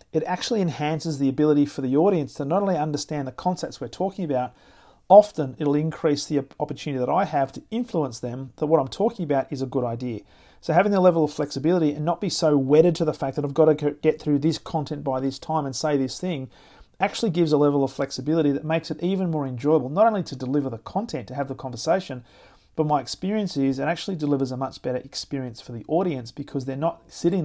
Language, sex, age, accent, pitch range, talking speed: English, male, 40-59, Australian, 135-160 Hz, 230 wpm